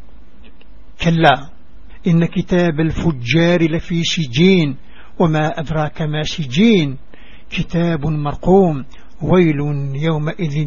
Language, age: English, 60-79